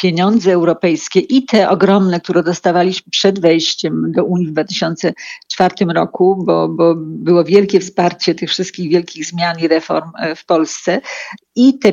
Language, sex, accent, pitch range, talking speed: Polish, female, native, 170-190 Hz, 145 wpm